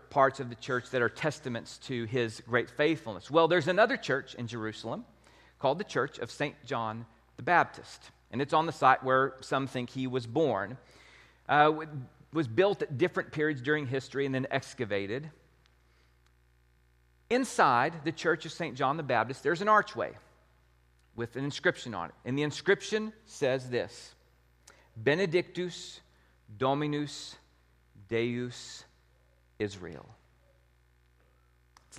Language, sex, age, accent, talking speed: English, male, 40-59, American, 135 wpm